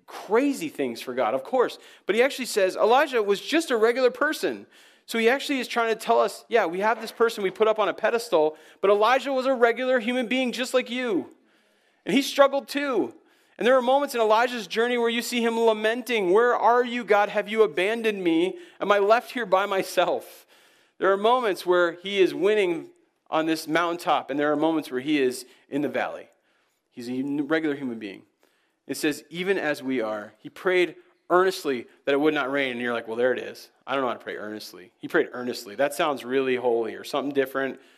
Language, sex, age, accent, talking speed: English, male, 40-59, American, 220 wpm